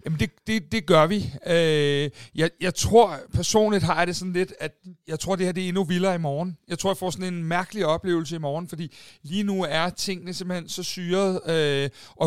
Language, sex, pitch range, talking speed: Danish, male, 160-195 Hz, 220 wpm